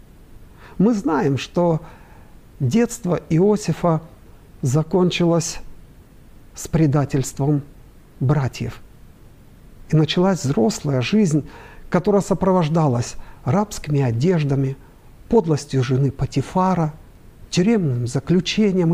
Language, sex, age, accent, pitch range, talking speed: Russian, male, 50-69, native, 130-185 Hz, 70 wpm